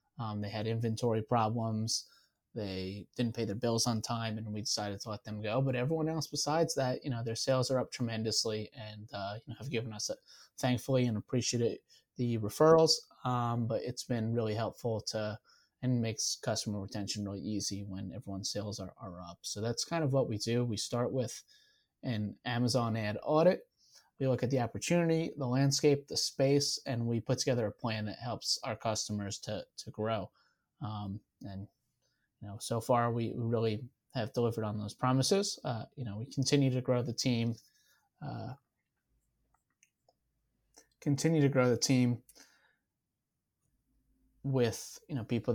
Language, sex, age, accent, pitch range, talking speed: English, male, 20-39, American, 110-130 Hz, 175 wpm